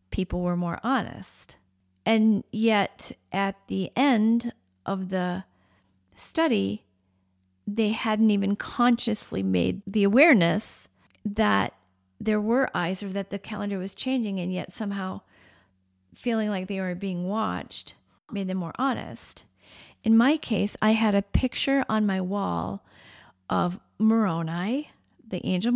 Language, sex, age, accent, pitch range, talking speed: English, female, 40-59, American, 165-220 Hz, 130 wpm